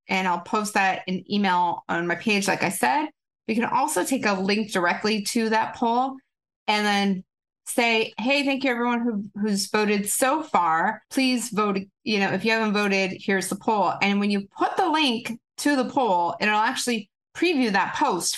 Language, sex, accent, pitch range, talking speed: English, female, American, 190-245 Hz, 195 wpm